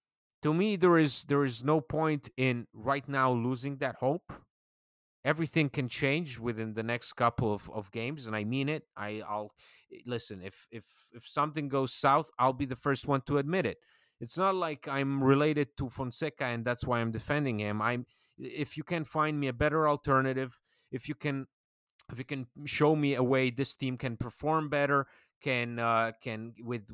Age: 30-49